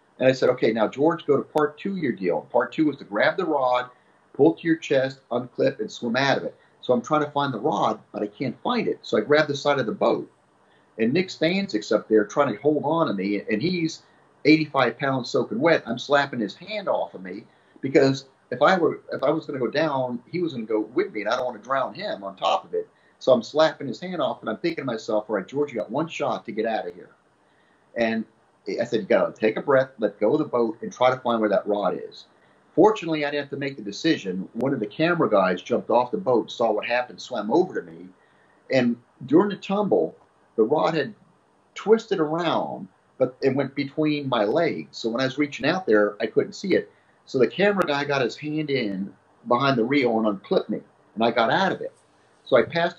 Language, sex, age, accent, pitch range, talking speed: English, male, 40-59, American, 115-155 Hz, 250 wpm